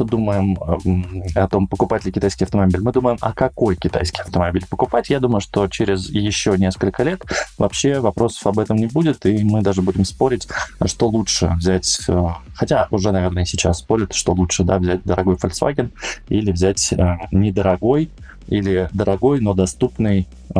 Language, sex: Russian, male